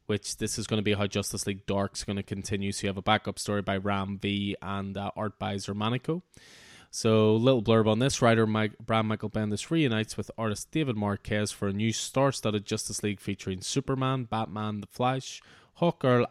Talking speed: 200 wpm